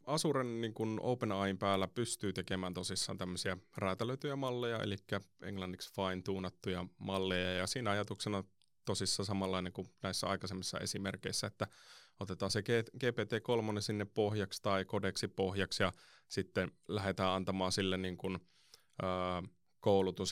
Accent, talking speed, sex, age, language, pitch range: native, 125 wpm, male, 30-49, Finnish, 90-105 Hz